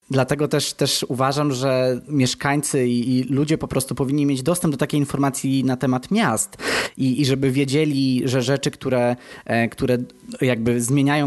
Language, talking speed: Polish, 155 wpm